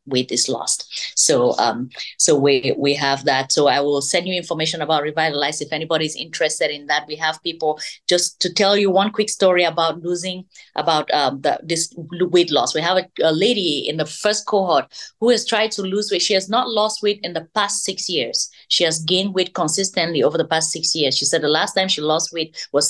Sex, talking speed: female, 225 wpm